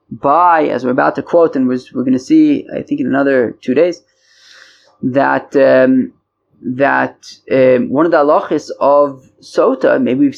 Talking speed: 170 wpm